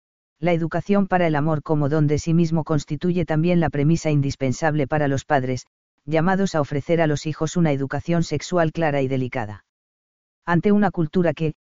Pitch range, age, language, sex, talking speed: 145-165 Hz, 40-59, Spanish, female, 175 wpm